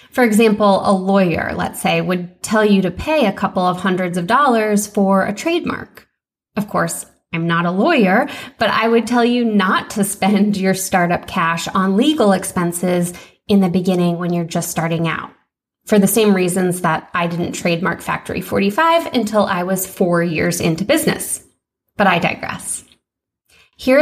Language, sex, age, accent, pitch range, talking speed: English, female, 20-39, American, 180-225 Hz, 170 wpm